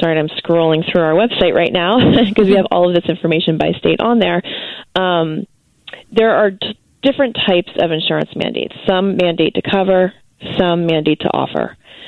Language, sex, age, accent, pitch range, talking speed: English, female, 30-49, American, 155-185 Hz, 180 wpm